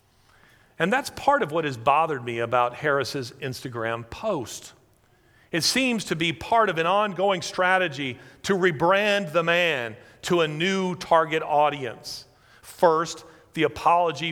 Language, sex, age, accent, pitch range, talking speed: English, male, 40-59, American, 135-190 Hz, 140 wpm